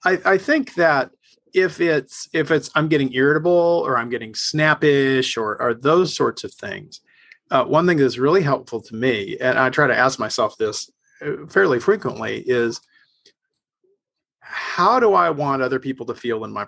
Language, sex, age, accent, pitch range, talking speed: English, male, 40-59, American, 125-185 Hz, 175 wpm